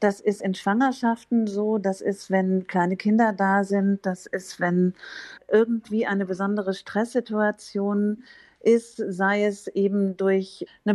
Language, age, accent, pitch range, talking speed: German, 50-69, German, 185-215 Hz, 135 wpm